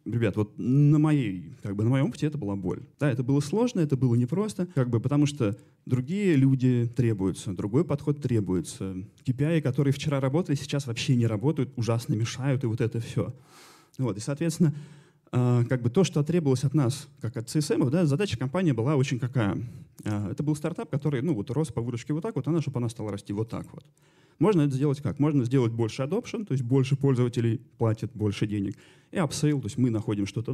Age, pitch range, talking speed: 20-39, 115-150 Hz, 205 wpm